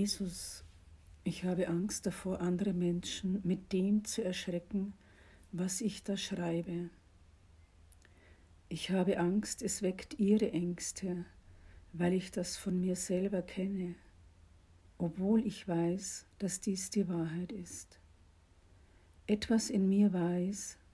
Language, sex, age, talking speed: German, female, 60-79, 120 wpm